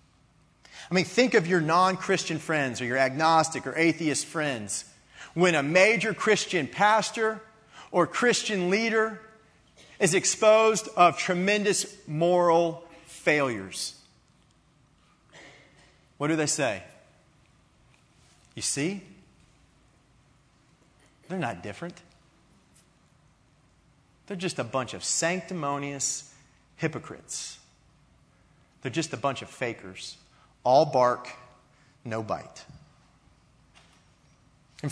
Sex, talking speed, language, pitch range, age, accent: male, 95 wpm, English, 140-200 Hz, 40-59, American